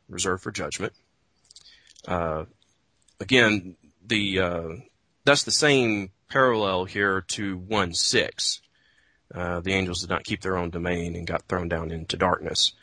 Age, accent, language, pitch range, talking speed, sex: 30-49, American, English, 85-105 Hz, 140 wpm, male